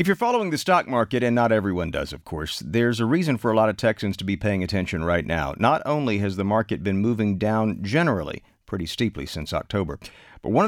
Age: 50-69